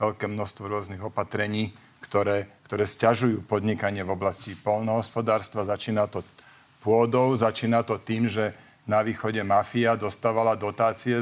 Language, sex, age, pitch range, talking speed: Slovak, male, 40-59, 110-130 Hz, 125 wpm